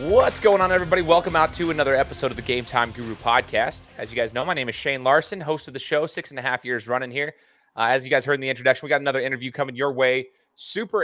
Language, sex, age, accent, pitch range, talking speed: English, male, 20-39, American, 120-145 Hz, 275 wpm